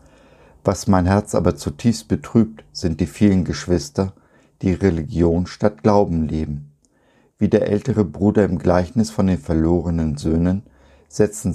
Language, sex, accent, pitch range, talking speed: German, male, German, 80-100 Hz, 135 wpm